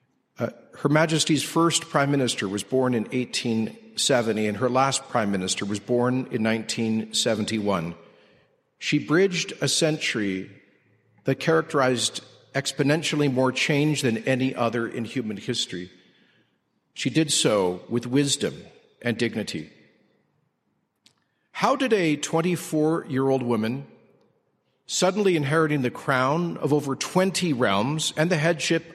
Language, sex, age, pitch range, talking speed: English, male, 50-69, 120-165 Hz, 120 wpm